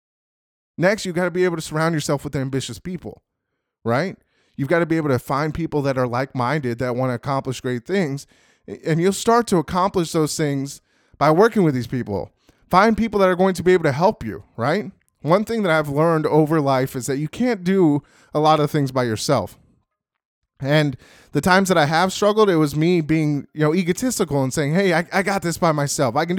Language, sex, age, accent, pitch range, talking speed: English, male, 20-39, American, 135-175 Hz, 220 wpm